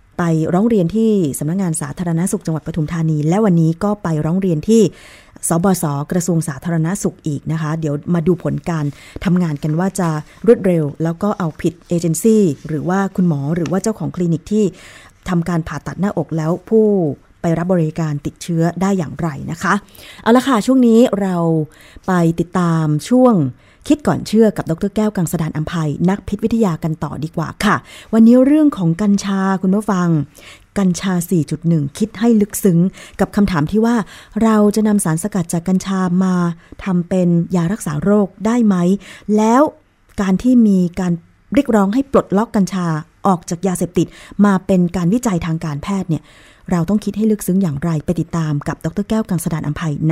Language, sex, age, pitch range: Thai, female, 20-39, 160-205 Hz